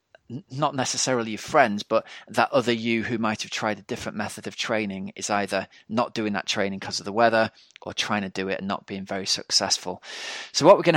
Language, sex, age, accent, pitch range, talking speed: English, male, 20-39, British, 100-115 Hz, 225 wpm